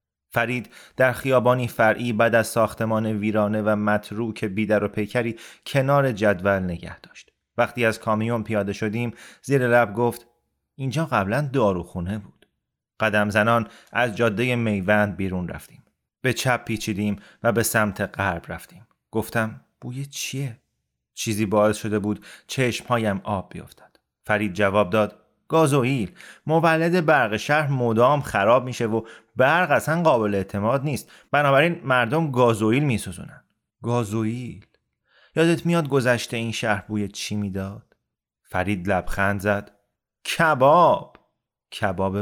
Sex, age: male, 30-49